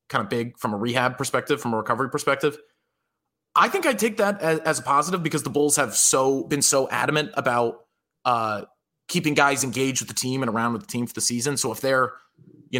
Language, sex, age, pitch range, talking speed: English, male, 20-39, 110-140 Hz, 225 wpm